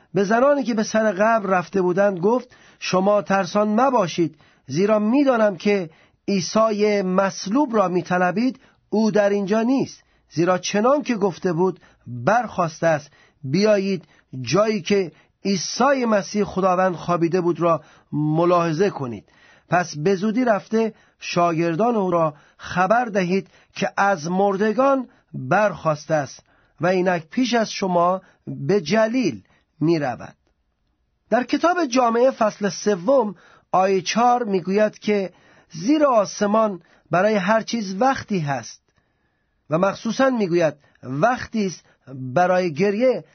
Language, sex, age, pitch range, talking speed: Persian, male, 40-59, 175-220 Hz, 120 wpm